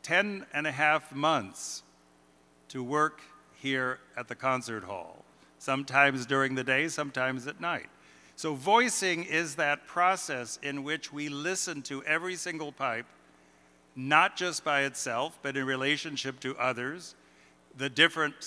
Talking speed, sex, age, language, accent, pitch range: 140 wpm, male, 50-69, English, American, 115-150 Hz